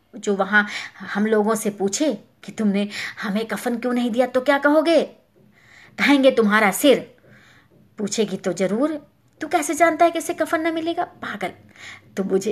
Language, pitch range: Hindi, 205-275 Hz